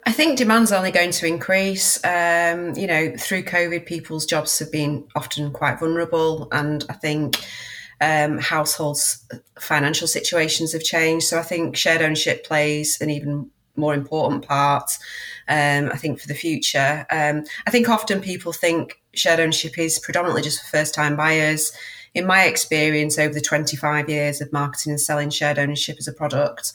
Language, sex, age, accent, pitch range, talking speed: English, female, 30-49, British, 145-170 Hz, 170 wpm